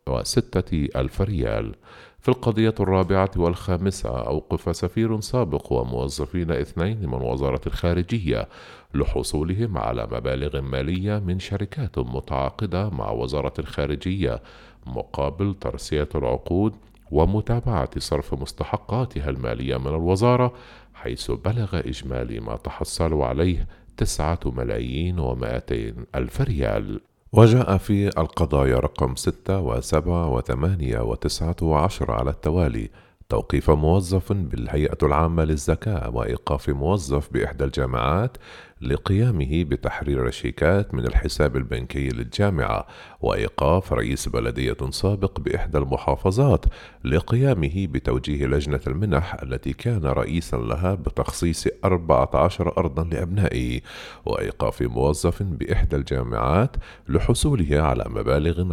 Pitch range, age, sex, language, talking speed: 70-95 Hz, 50-69, male, Arabic, 100 wpm